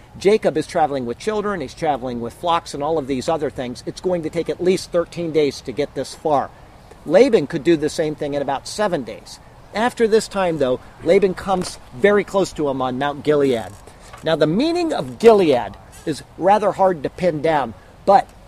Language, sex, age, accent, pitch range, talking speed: English, male, 50-69, American, 135-185 Hz, 200 wpm